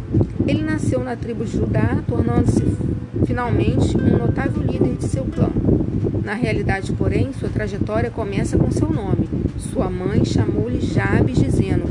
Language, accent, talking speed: Portuguese, Brazilian, 140 wpm